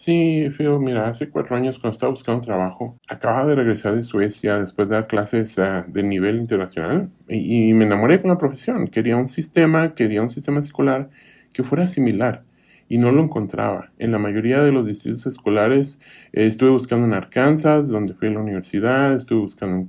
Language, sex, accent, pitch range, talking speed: English, male, Mexican, 110-145 Hz, 195 wpm